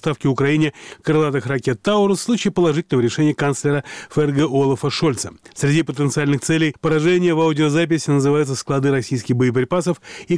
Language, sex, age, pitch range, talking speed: Russian, male, 30-49, 130-165 Hz, 140 wpm